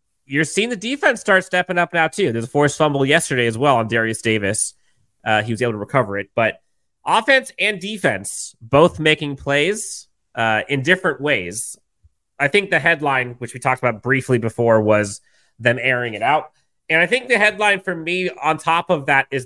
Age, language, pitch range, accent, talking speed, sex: 30-49, English, 115-155 Hz, American, 195 wpm, male